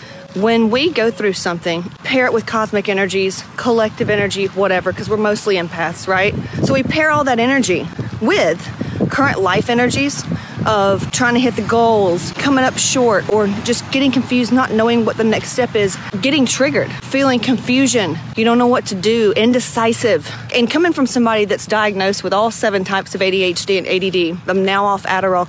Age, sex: 40-59, female